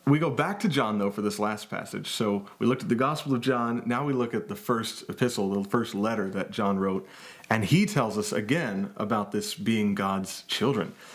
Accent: American